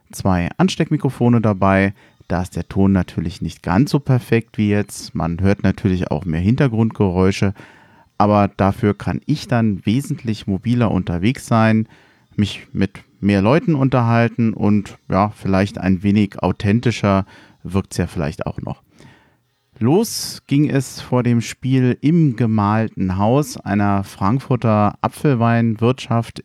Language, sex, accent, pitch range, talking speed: German, male, German, 100-130 Hz, 130 wpm